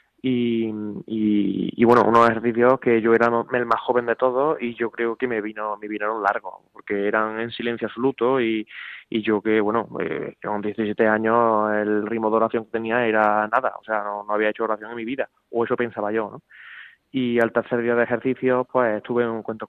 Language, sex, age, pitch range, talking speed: Spanish, male, 20-39, 110-120 Hz, 215 wpm